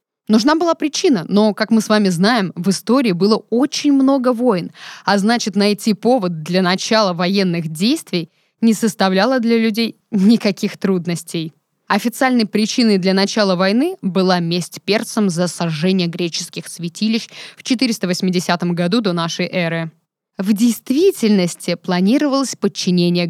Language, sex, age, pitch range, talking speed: Russian, female, 20-39, 180-230 Hz, 130 wpm